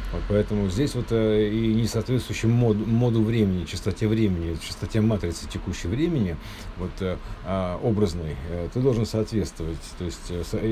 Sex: male